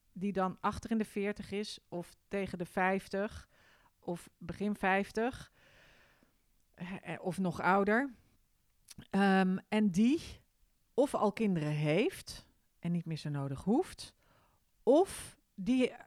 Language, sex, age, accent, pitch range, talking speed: Dutch, female, 40-59, Dutch, 185-230 Hz, 125 wpm